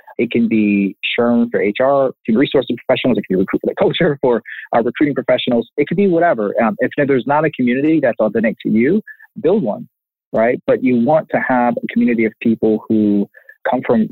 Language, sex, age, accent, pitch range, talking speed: English, male, 30-49, American, 110-150 Hz, 215 wpm